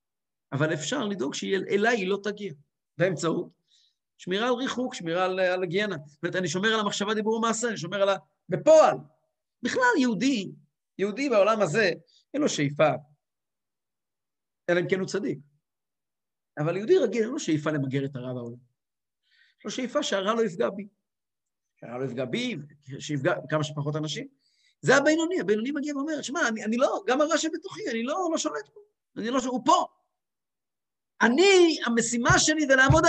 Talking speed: 135 wpm